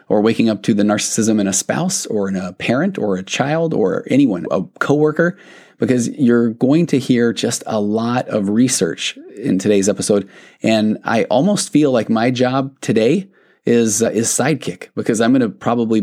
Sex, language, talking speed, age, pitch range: male, English, 185 wpm, 30-49, 105-120 Hz